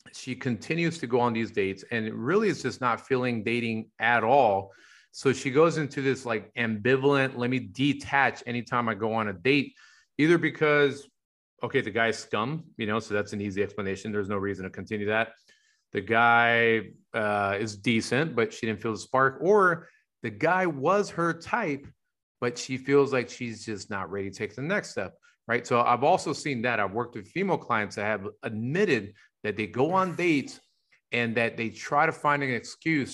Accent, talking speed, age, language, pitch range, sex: American, 195 wpm, 30-49, English, 110-145 Hz, male